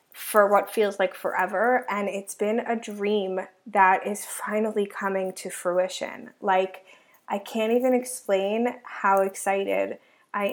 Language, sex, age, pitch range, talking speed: English, female, 20-39, 195-245 Hz, 135 wpm